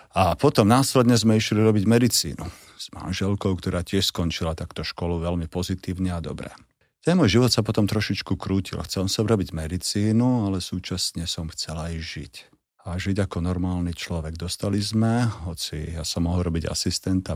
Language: Slovak